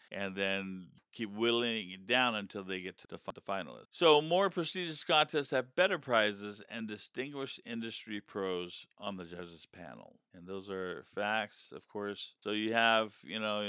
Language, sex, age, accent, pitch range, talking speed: English, male, 50-69, American, 95-120 Hz, 175 wpm